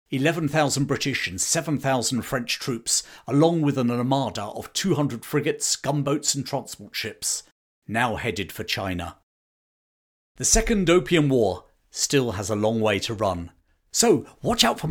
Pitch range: 100-155 Hz